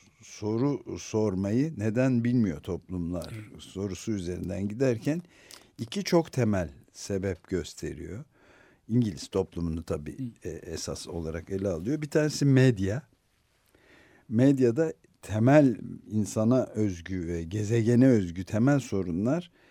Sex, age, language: male, 60-79, Turkish